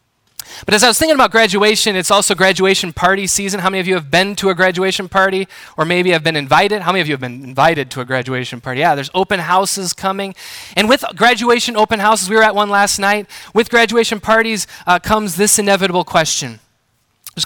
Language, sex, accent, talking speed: English, male, American, 215 wpm